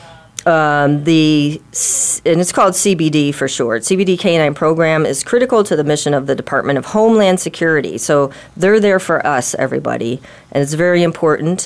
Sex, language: female, English